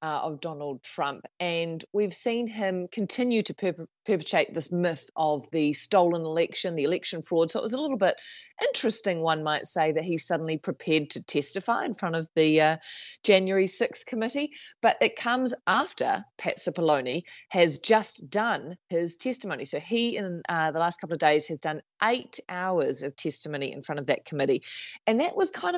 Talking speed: 185 wpm